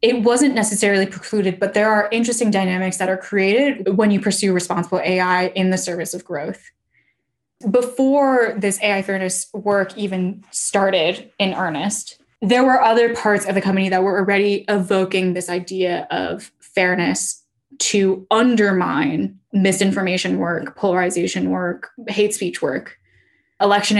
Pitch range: 185-210 Hz